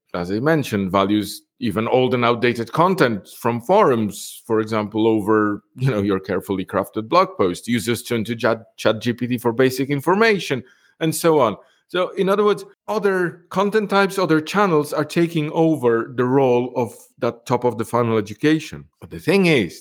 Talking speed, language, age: 175 wpm, English, 50-69